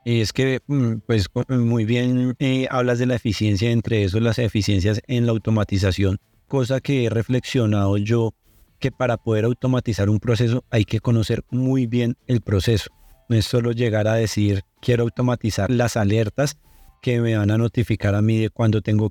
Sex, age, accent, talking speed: male, 30-49, Colombian, 175 wpm